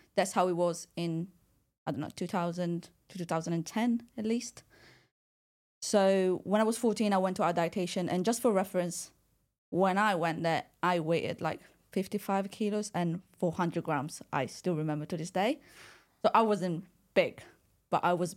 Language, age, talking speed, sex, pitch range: English, 20-39, 170 wpm, female, 180-215 Hz